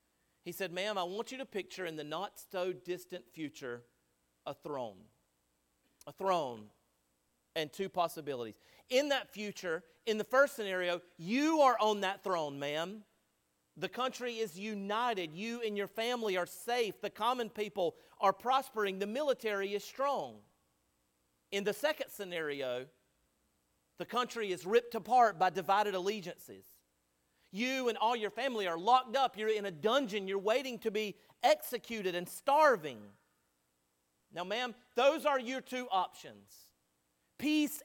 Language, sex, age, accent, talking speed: English, male, 40-59, American, 145 wpm